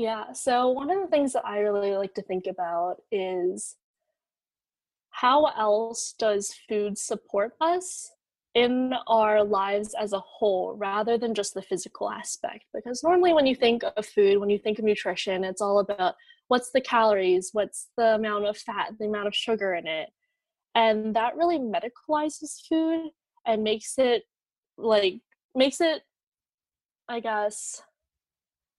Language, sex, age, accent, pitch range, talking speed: English, female, 20-39, American, 205-265 Hz, 155 wpm